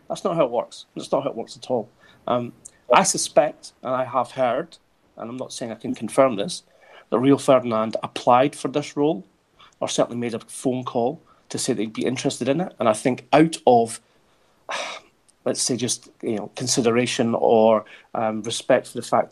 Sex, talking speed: male, 200 wpm